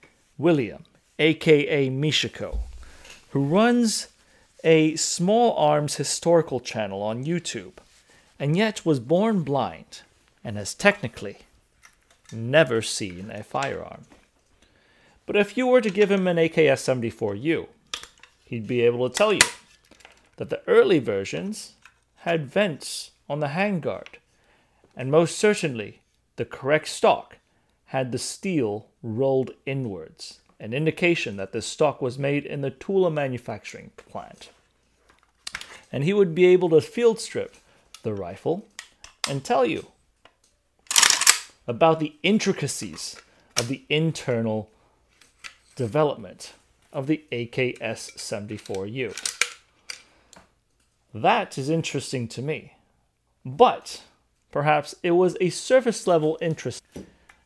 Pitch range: 120-175 Hz